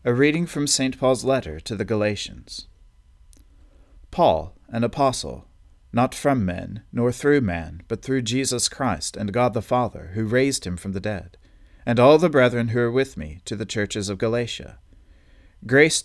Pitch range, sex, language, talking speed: 95-130 Hz, male, English, 170 wpm